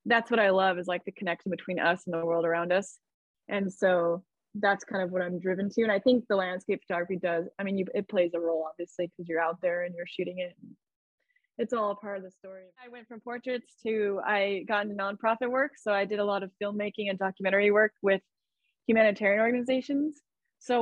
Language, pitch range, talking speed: English, 180-215 Hz, 220 wpm